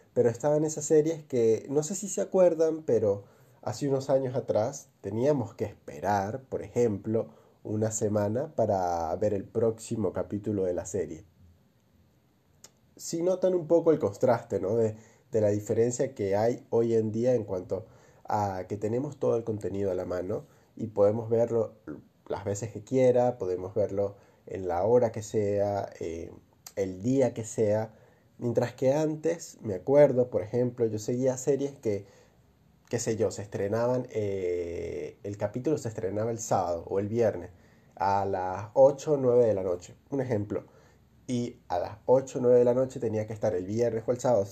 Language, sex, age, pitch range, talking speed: Spanish, male, 20-39, 105-140 Hz, 175 wpm